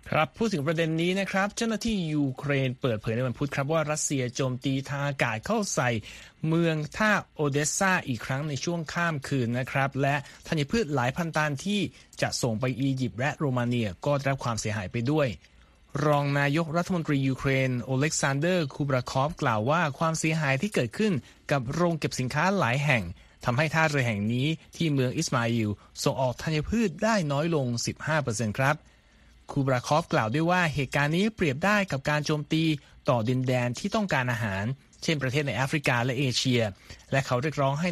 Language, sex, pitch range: Thai, male, 125-160 Hz